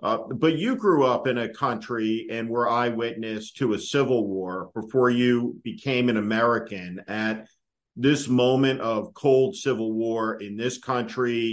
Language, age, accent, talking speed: English, 50-69, American, 155 wpm